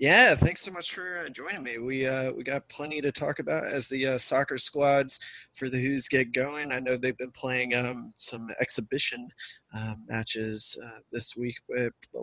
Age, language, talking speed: 20-39, English, 195 wpm